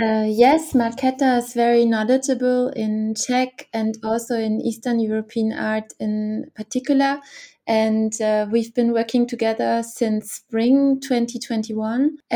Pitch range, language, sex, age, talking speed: 220-250 Hz, Czech, female, 20-39, 120 wpm